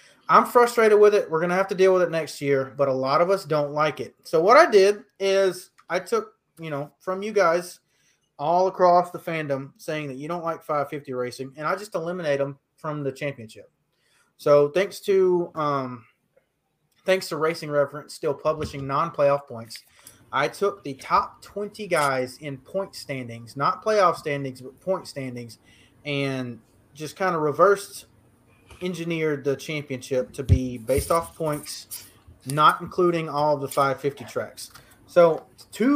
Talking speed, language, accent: 170 wpm, English, American